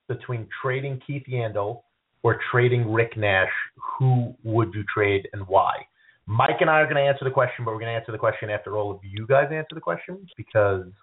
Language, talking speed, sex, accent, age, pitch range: English, 210 wpm, male, American, 30-49, 110-140 Hz